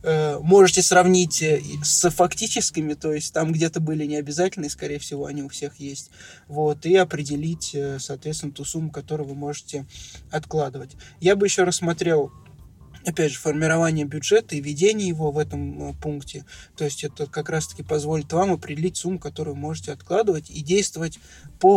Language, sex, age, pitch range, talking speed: Russian, male, 20-39, 145-165 Hz, 160 wpm